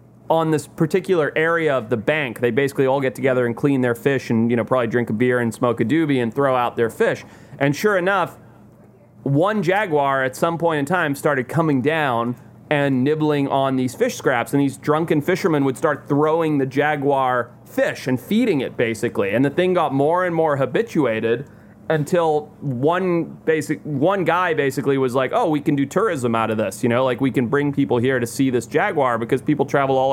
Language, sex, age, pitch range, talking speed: English, male, 30-49, 125-150 Hz, 210 wpm